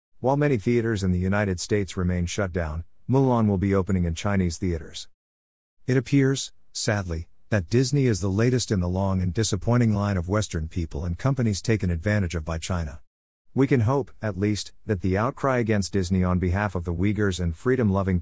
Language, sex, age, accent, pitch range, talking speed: English, male, 50-69, American, 85-115 Hz, 190 wpm